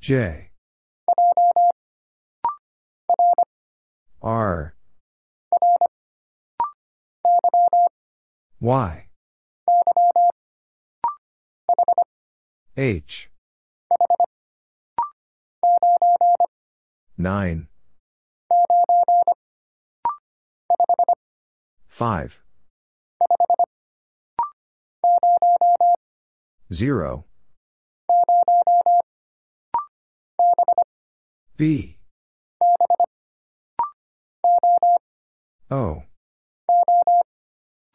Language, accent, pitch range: English, American, 235-350 Hz